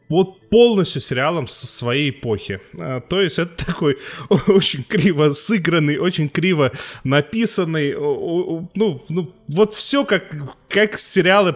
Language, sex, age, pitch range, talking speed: Russian, male, 20-39, 130-175 Hz, 120 wpm